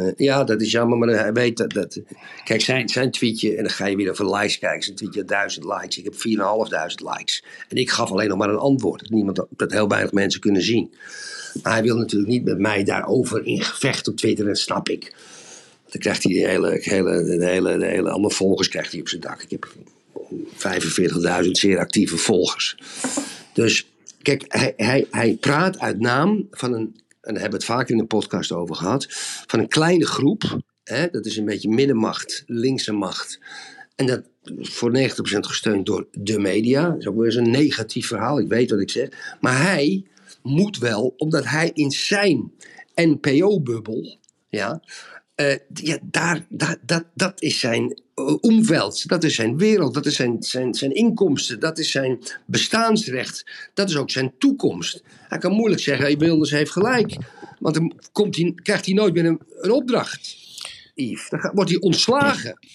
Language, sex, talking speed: Dutch, male, 185 wpm